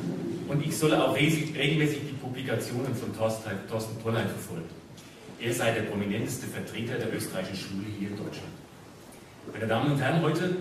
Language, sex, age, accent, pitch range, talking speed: English, male, 40-59, German, 110-135 Hz, 155 wpm